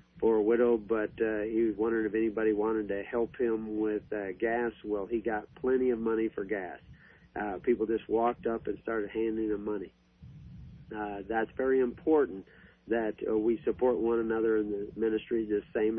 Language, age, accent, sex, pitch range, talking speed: English, 40-59, American, male, 110-125 Hz, 190 wpm